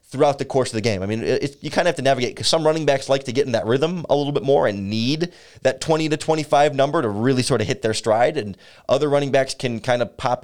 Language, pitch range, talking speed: English, 110-140 Hz, 300 wpm